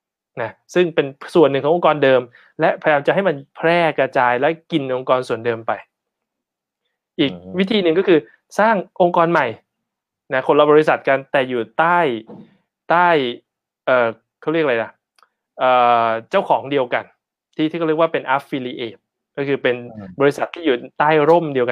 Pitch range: 125-170 Hz